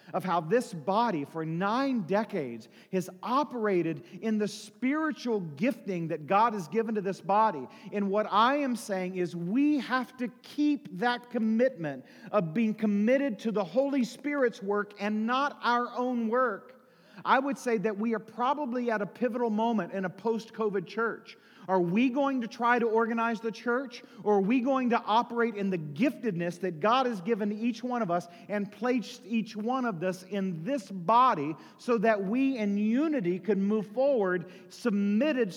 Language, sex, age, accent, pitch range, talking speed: English, male, 40-59, American, 195-240 Hz, 175 wpm